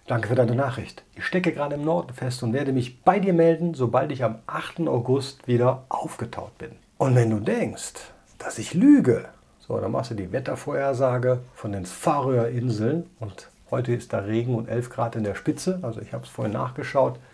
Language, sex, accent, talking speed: German, male, German, 200 wpm